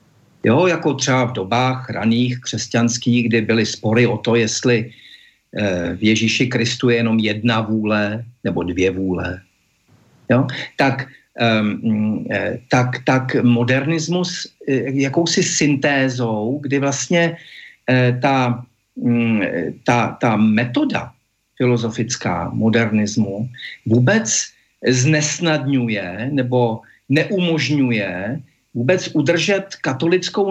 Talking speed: 105 wpm